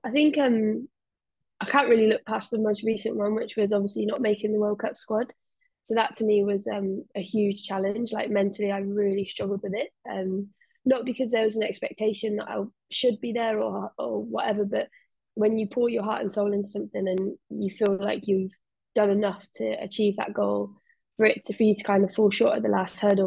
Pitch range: 195-220 Hz